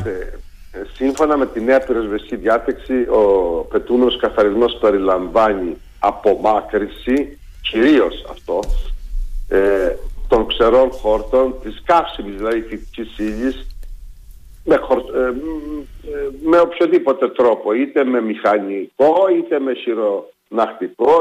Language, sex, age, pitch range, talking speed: Greek, male, 50-69, 110-170 Hz, 90 wpm